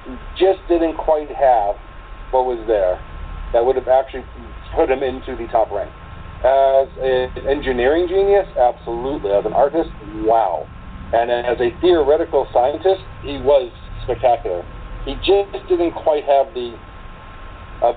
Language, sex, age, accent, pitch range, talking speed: English, male, 50-69, American, 115-155 Hz, 135 wpm